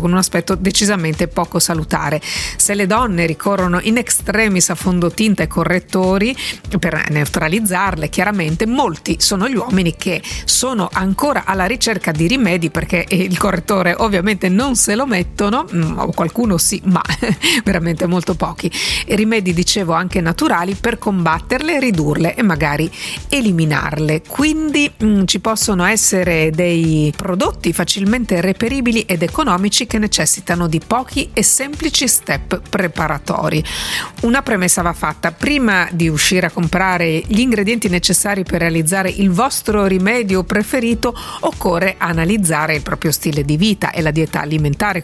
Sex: female